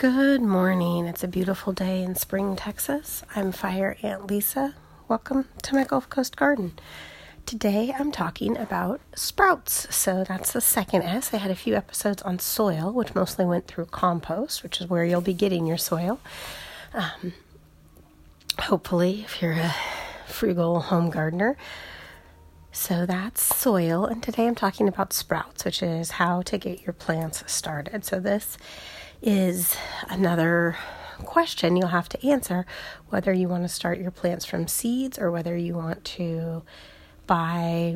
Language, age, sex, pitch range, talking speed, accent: English, 30-49, female, 170-205 Hz, 155 wpm, American